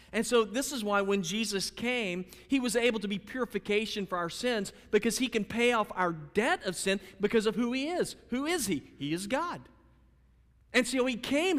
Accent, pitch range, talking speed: American, 150-230 Hz, 210 wpm